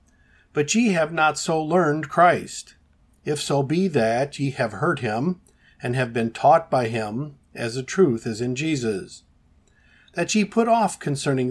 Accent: American